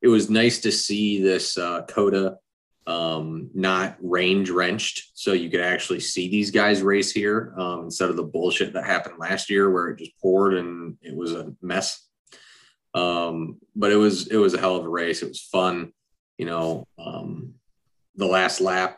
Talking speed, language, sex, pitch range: 185 wpm, English, male, 95-110 Hz